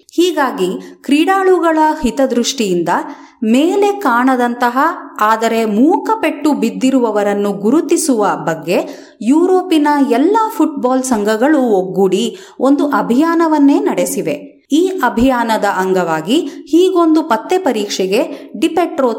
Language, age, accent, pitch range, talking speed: Kannada, 30-49, native, 220-315 Hz, 75 wpm